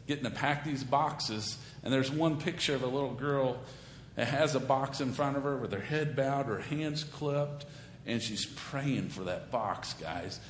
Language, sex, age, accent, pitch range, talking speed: English, male, 50-69, American, 140-200 Hz, 200 wpm